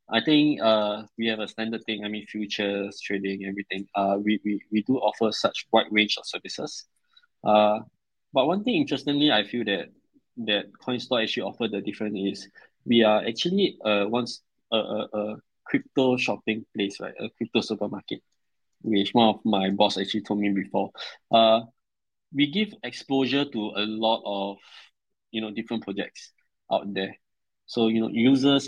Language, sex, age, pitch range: Thai, male, 20-39, 100-115 Hz